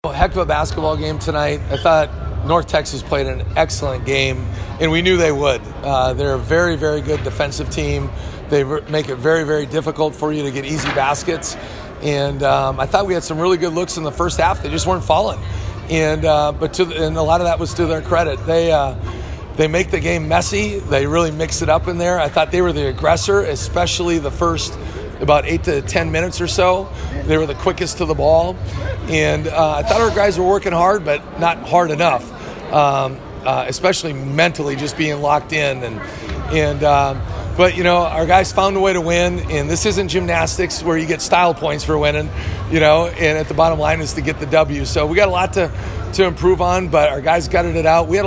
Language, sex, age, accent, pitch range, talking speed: English, male, 40-59, American, 130-170 Hz, 230 wpm